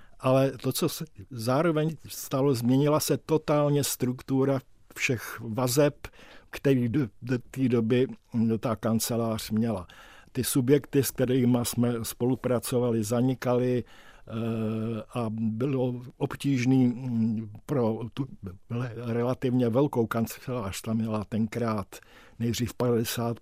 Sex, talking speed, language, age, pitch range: male, 105 wpm, Czech, 60-79, 115-130 Hz